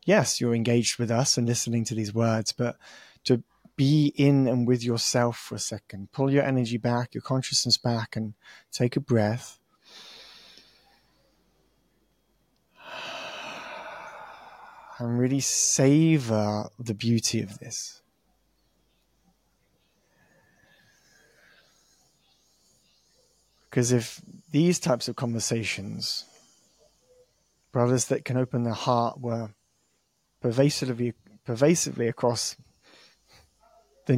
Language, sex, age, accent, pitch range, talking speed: English, male, 30-49, British, 110-135 Hz, 95 wpm